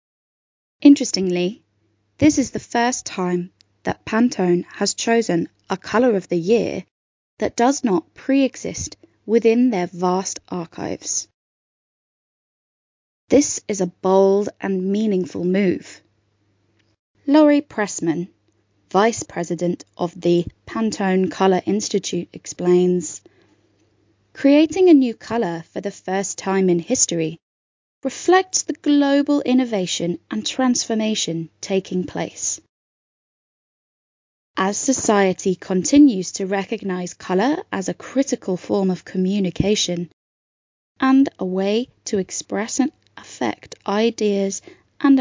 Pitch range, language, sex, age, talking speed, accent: 180-240 Hz, English, female, 20-39, 105 wpm, British